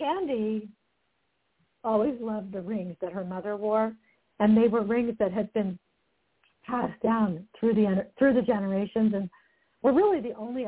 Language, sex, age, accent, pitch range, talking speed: English, female, 60-79, American, 180-220 Hz, 155 wpm